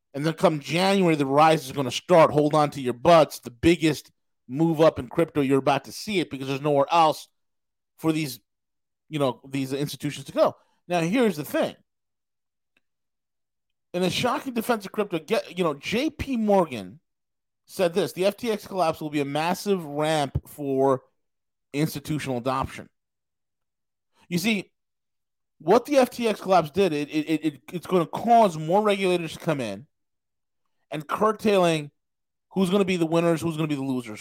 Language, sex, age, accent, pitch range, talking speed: English, male, 40-59, American, 135-180 Hz, 175 wpm